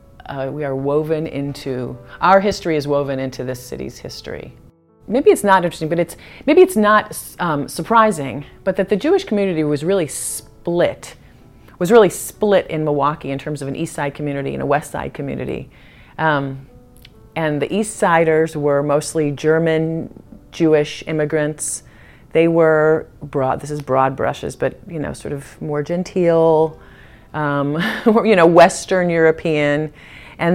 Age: 40-59